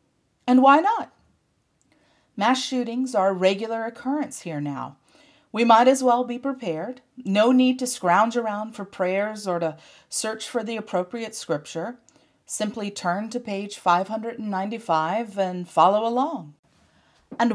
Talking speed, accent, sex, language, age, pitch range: 135 wpm, American, female, English, 40-59, 190-255 Hz